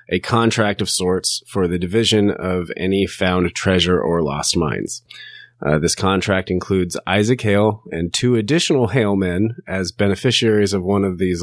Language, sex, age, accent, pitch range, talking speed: English, male, 30-49, American, 90-115 Hz, 165 wpm